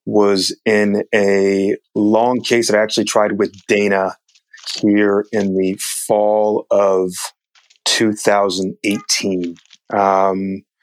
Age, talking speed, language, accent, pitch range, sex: 30-49, 100 wpm, English, American, 100-110 Hz, male